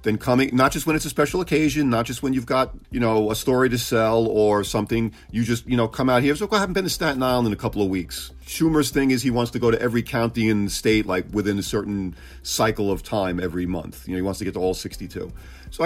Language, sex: English, male